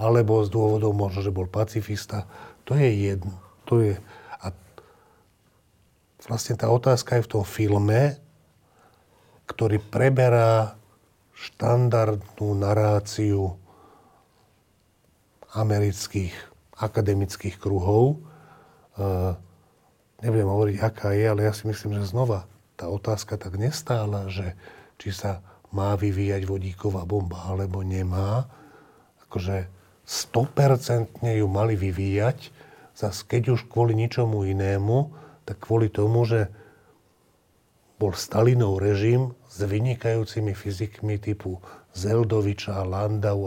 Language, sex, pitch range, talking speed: Slovak, male, 100-115 Hz, 100 wpm